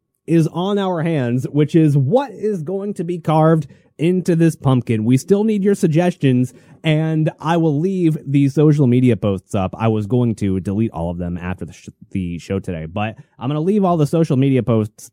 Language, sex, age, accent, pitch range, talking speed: English, male, 30-49, American, 110-160 Hz, 205 wpm